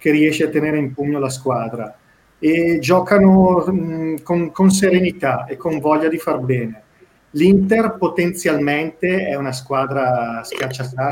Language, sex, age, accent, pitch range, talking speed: Italian, male, 40-59, native, 125-155 Hz, 140 wpm